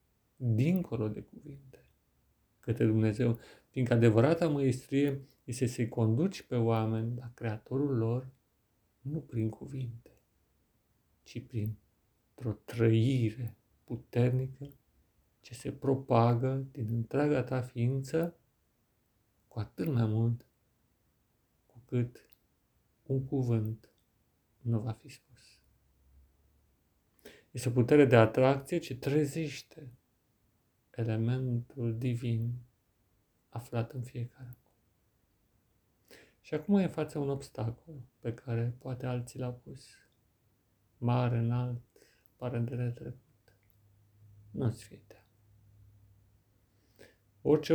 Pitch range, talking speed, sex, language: 110-130 Hz, 100 wpm, male, Romanian